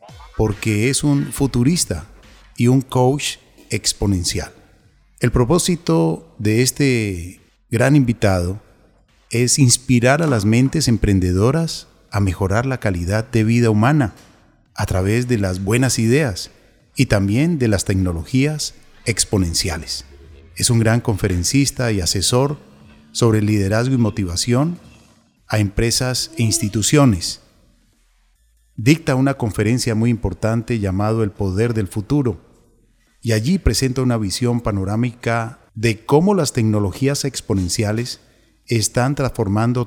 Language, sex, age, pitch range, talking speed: English, male, 40-59, 105-130 Hz, 115 wpm